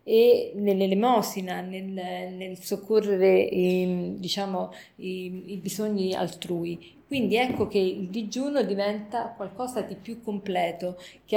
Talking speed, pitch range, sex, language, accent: 115 wpm, 190-235 Hz, female, Italian, native